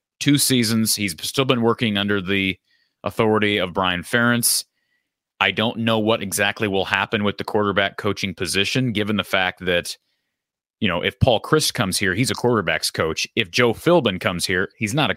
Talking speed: 185 wpm